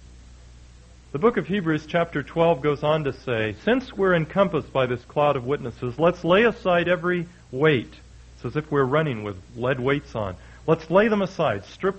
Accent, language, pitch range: American, English, 105-160 Hz